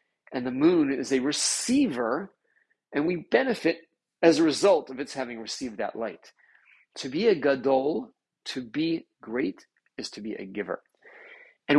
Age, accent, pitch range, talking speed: 40-59, American, 130-200 Hz, 160 wpm